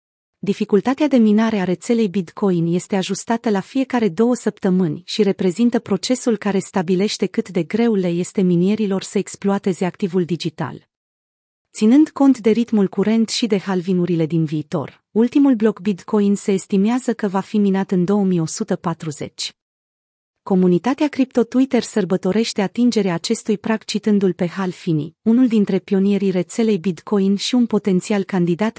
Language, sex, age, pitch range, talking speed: Romanian, female, 30-49, 175-220 Hz, 140 wpm